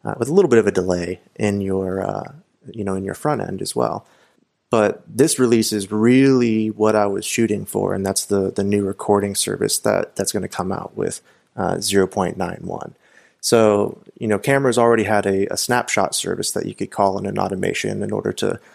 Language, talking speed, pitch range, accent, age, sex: English, 220 wpm, 95-110 Hz, American, 30-49, male